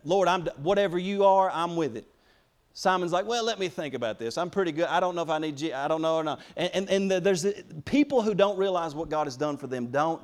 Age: 40-59